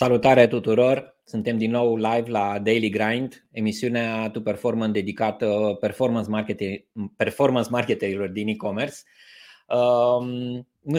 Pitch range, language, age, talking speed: 115-140 Hz, Romanian, 20-39, 110 wpm